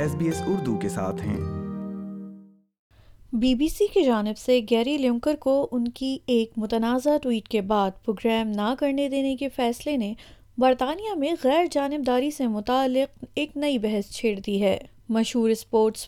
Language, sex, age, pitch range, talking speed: Urdu, female, 20-39, 220-285 Hz, 135 wpm